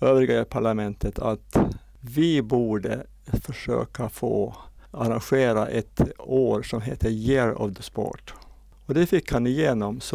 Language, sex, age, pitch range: Swedish, male, 60-79, 115-140 Hz